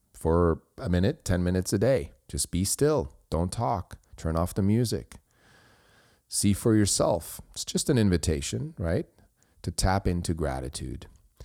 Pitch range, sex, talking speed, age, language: 80-100 Hz, male, 145 wpm, 30-49, English